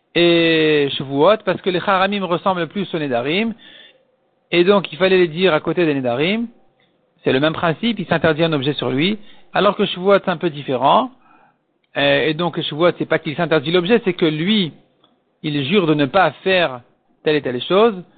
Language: French